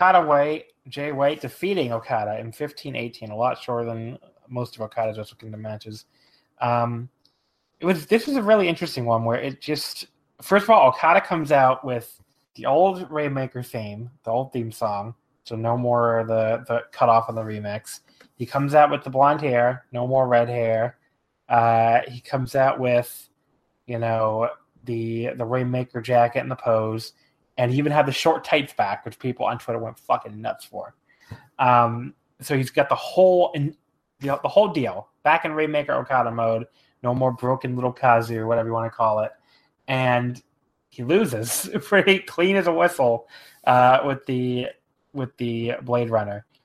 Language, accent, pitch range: English, American, 115-145 Hz